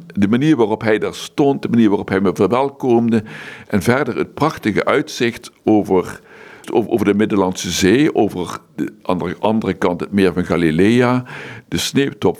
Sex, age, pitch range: male, 60-79, 90-120 Hz